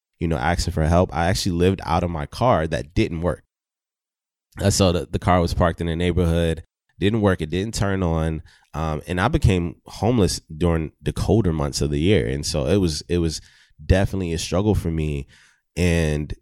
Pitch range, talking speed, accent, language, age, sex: 80-95 Hz, 195 wpm, American, English, 20-39, male